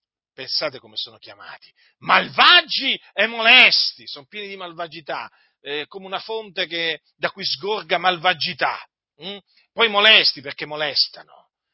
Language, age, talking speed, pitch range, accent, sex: Italian, 40-59, 130 wpm, 170-250 Hz, native, male